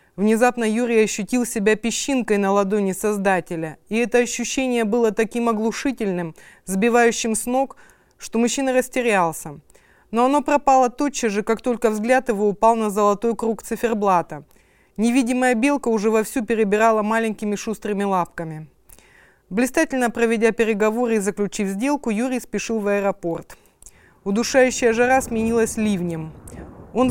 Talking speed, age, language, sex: 125 wpm, 30-49, Russian, female